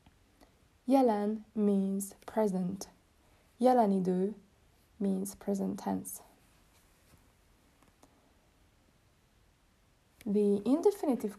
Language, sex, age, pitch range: Hungarian, female, 20-39, 190-240 Hz